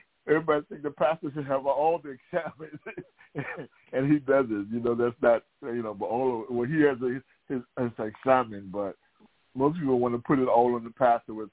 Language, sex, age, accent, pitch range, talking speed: English, male, 60-79, American, 100-120 Hz, 215 wpm